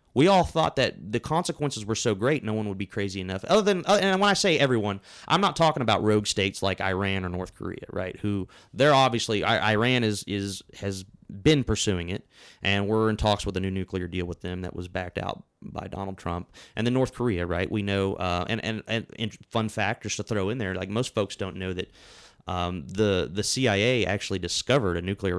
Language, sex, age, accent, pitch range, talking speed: English, male, 30-49, American, 95-115 Hz, 220 wpm